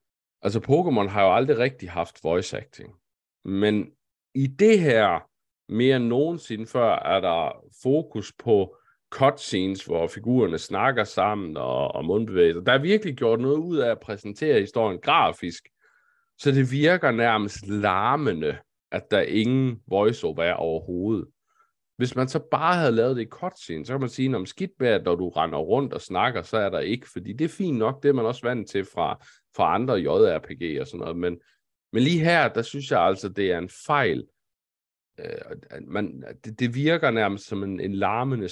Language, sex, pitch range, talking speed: Danish, male, 100-155 Hz, 175 wpm